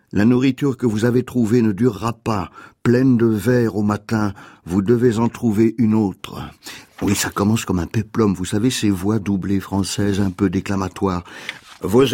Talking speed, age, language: 180 wpm, 60-79, French